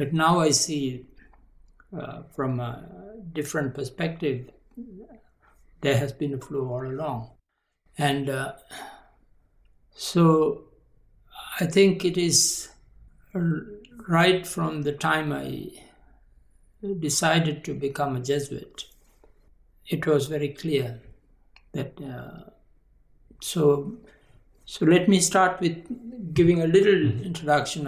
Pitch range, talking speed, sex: 140-175 Hz, 105 wpm, male